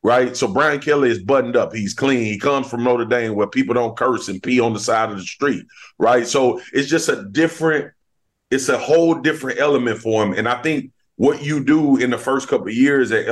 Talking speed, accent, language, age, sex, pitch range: 235 wpm, American, English, 30-49, male, 110-140 Hz